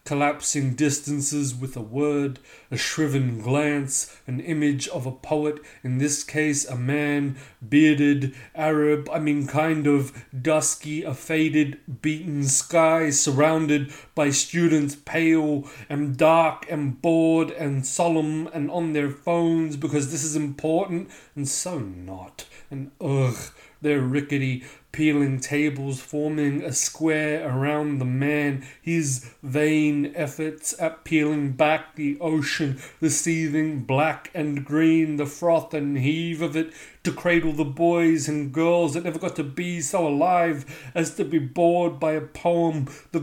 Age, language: 30-49, English